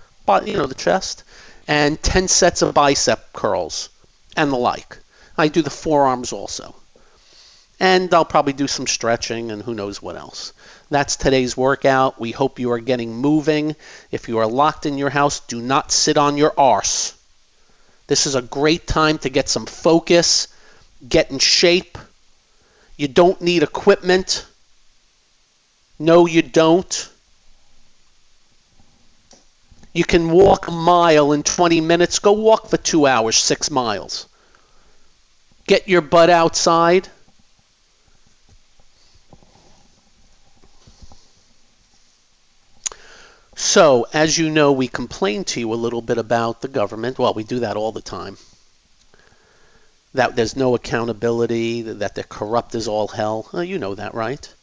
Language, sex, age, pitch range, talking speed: English, male, 50-69, 120-170 Hz, 135 wpm